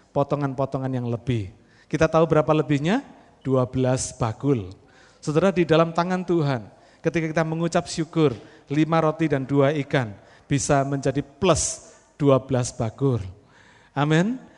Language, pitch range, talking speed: Malay, 155-245 Hz, 120 wpm